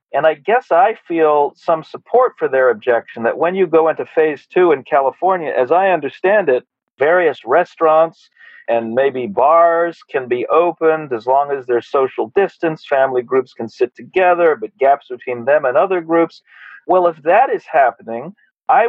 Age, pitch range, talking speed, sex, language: 40-59, 125-175 Hz, 175 wpm, male, English